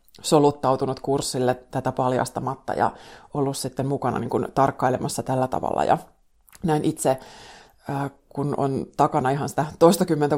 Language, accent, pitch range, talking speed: Finnish, native, 140-160 Hz, 110 wpm